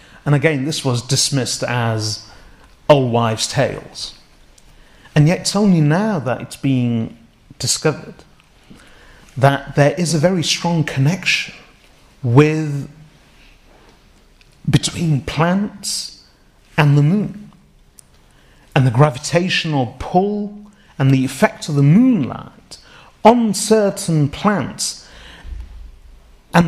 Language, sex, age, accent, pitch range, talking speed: English, male, 40-59, British, 130-175 Hz, 100 wpm